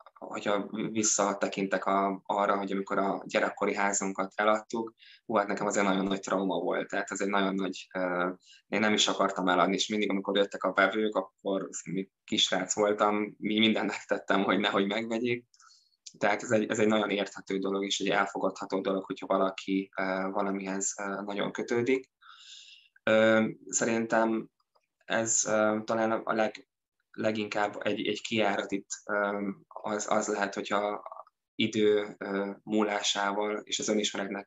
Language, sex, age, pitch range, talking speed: Hungarian, male, 20-39, 95-105 Hz, 140 wpm